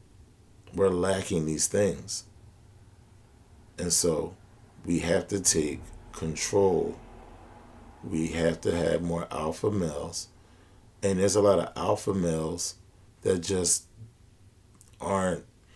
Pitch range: 85-100 Hz